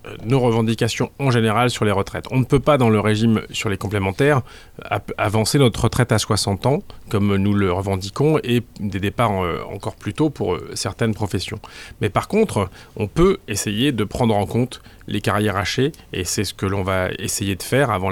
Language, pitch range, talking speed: French, 100-125 Hz, 195 wpm